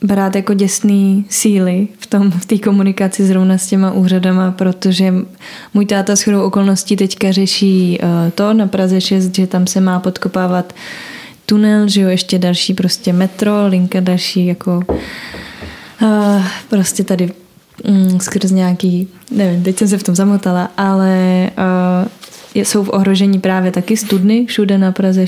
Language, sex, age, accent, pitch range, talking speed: Czech, female, 20-39, native, 185-200 Hz, 150 wpm